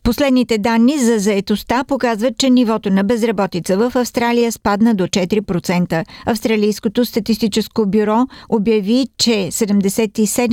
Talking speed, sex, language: 115 wpm, female, Bulgarian